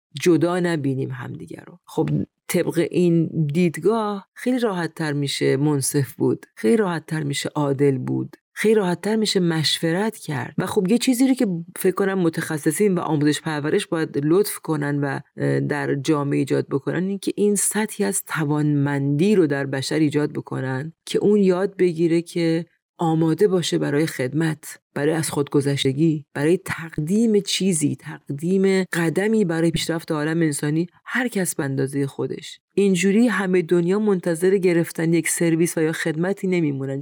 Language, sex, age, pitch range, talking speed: Persian, female, 40-59, 155-195 Hz, 145 wpm